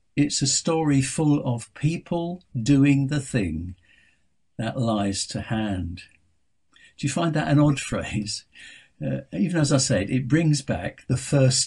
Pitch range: 100-130 Hz